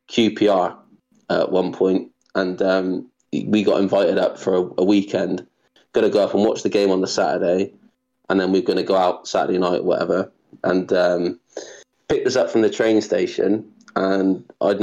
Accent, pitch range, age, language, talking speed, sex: British, 95-120 Hz, 20-39, English, 190 wpm, male